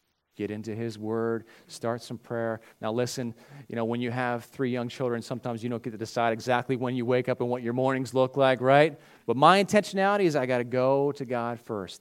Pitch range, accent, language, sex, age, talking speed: 115-150 Hz, American, English, male, 40-59, 230 wpm